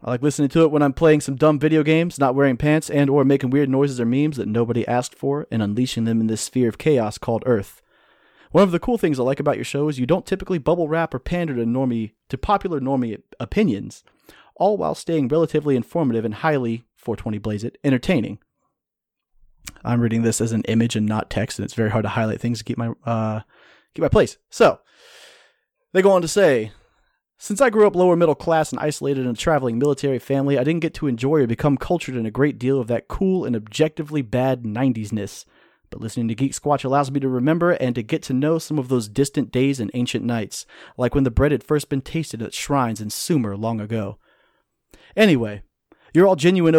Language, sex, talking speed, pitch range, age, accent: English, male, 220 wpm, 115-150 Hz, 30-49, American